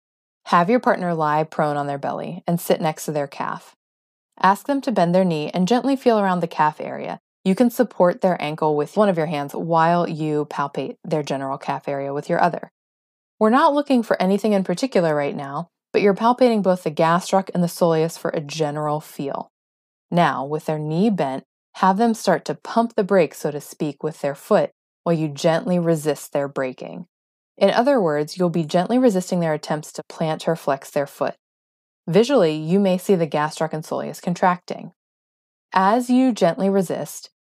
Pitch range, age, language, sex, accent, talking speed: 150-200 Hz, 20-39, English, female, American, 190 wpm